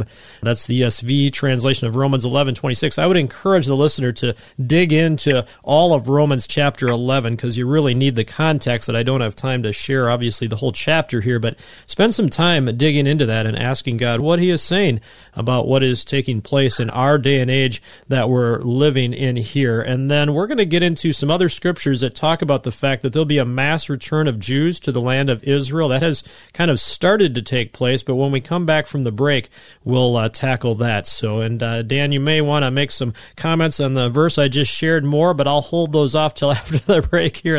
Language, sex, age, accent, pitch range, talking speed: English, male, 40-59, American, 125-160 Hz, 235 wpm